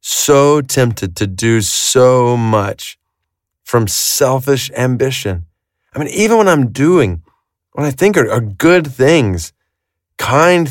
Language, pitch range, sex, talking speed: English, 115-170 Hz, male, 125 wpm